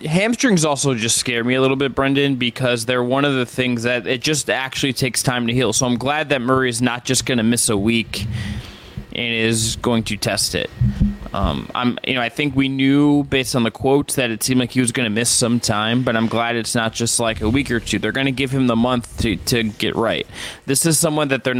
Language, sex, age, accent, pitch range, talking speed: English, male, 20-39, American, 120-145 Hz, 260 wpm